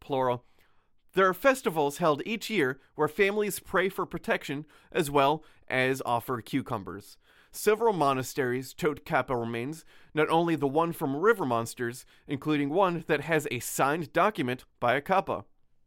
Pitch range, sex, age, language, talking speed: 135-185 Hz, male, 30-49, English, 150 wpm